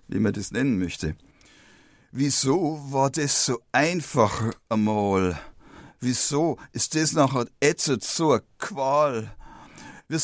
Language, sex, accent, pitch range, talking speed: English, male, German, 130-190 Hz, 115 wpm